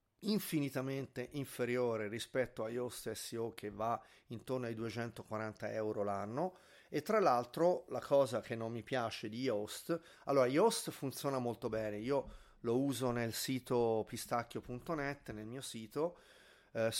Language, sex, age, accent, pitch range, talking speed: Italian, male, 30-49, native, 110-140 Hz, 140 wpm